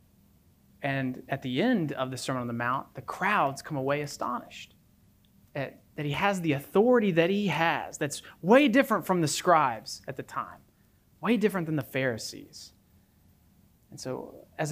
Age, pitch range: 20-39, 130-190 Hz